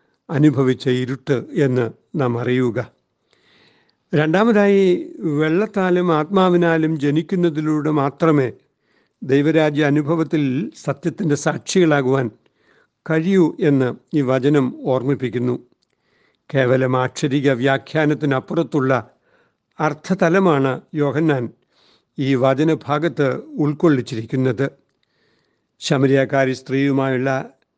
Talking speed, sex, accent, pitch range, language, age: 65 wpm, male, native, 135-160 Hz, Malayalam, 60-79